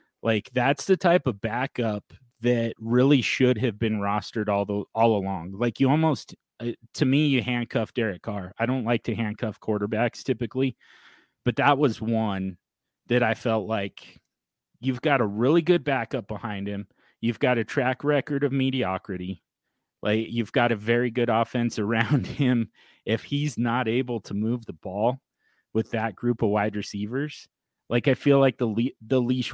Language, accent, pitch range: English, American, 105-130 Hz